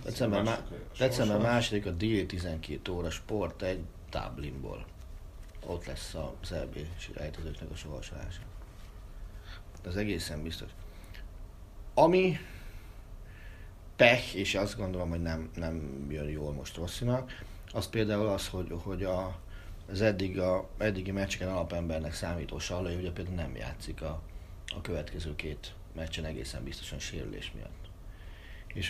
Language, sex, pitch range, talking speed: Hungarian, male, 85-100 Hz, 120 wpm